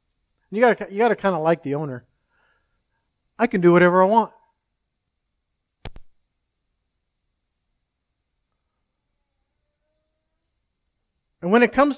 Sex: male